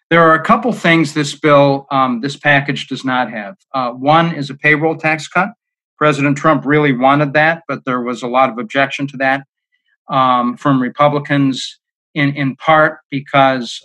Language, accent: English, American